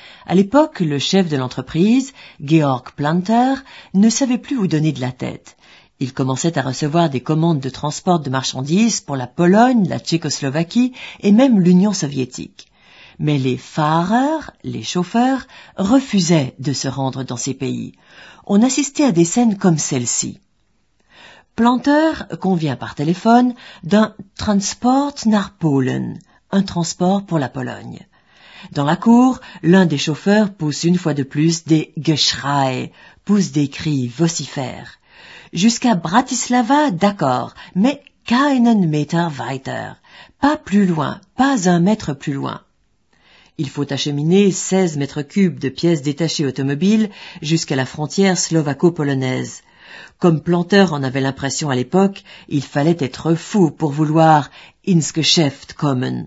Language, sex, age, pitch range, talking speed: French, female, 50-69, 145-205 Hz, 140 wpm